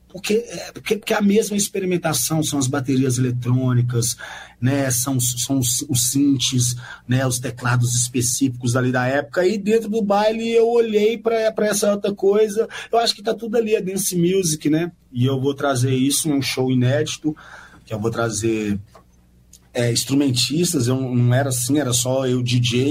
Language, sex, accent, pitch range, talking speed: Portuguese, male, Brazilian, 120-165 Hz, 170 wpm